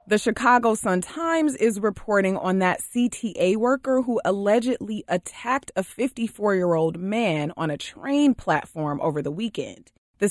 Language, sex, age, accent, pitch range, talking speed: English, female, 20-39, American, 175-235 Hz, 135 wpm